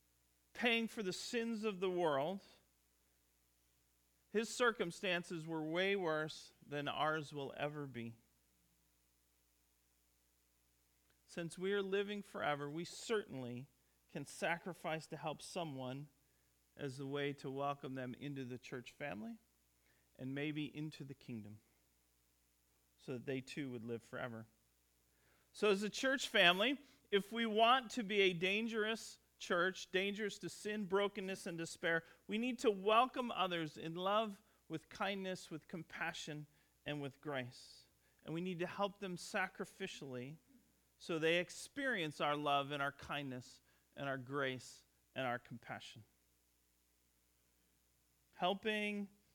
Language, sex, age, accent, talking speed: English, male, 40-59, American, 130 wpm